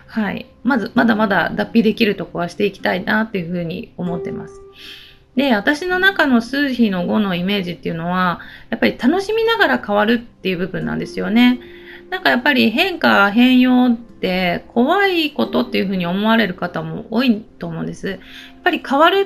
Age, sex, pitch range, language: 30-49, female, 185-265 Hz, Japanese